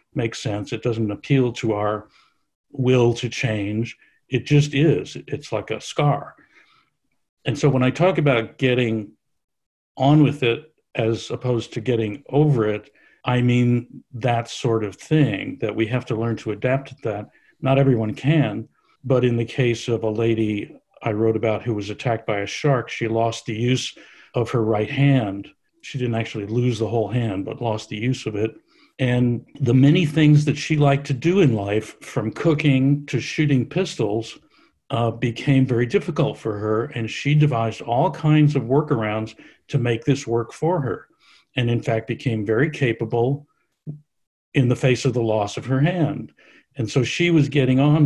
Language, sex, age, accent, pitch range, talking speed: English, male, 50-69, American, 115-145 Hz, 180 wpm